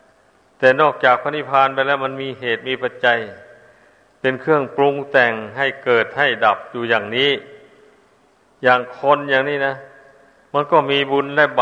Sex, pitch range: male, 120-140 Hz